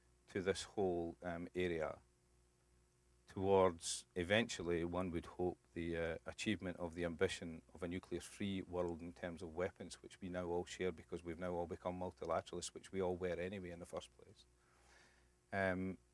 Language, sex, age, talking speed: English, male, 40-59, 170 wpm